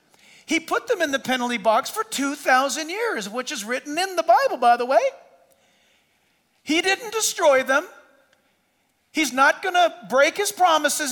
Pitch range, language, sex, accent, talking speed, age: 230-300 Hz, English, male, American, 160 wpm, 50-69